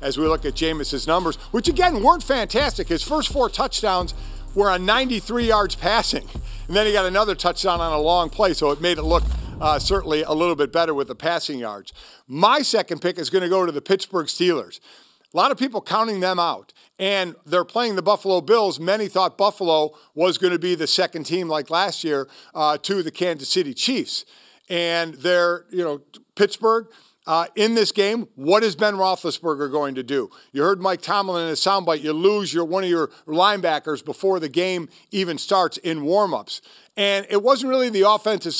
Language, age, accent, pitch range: English, 50-69, American, 165-205 Hz